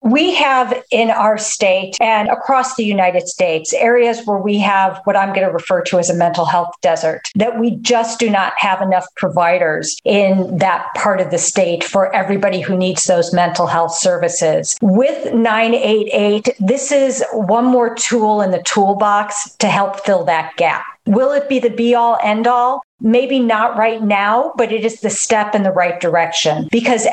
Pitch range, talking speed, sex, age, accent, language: 185-230 Hz, 185 wpm, female, 50-69, American, English